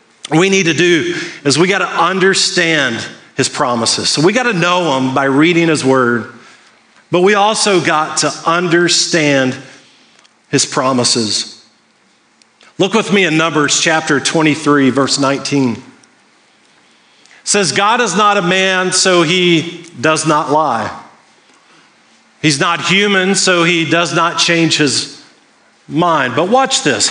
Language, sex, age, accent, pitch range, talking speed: English, male, 50-69, American, 145-185 Hz, 140 wpm